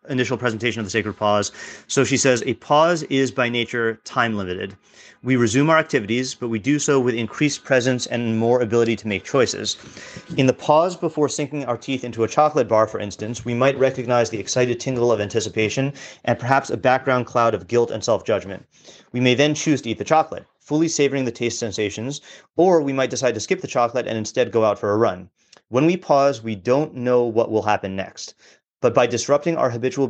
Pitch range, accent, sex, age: 115-135 Hz, American, male, 30-49